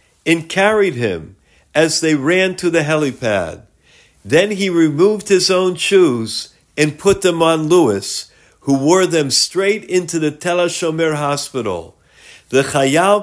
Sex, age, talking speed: male, 50-69, 140 wpm